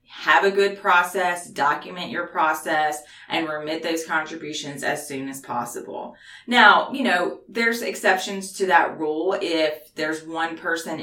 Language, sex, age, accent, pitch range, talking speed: English, female, 30-49, American, 155-195 Hz, 145 wpm